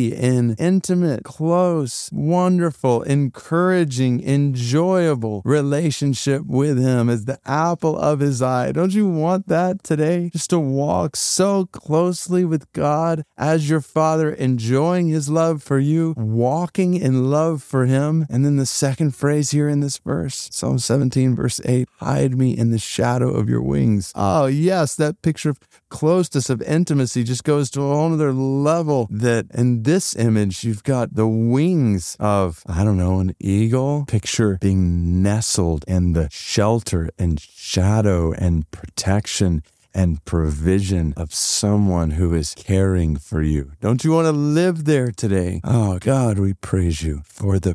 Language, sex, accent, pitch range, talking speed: English, male, American, 105-150 Hz, 155 wpm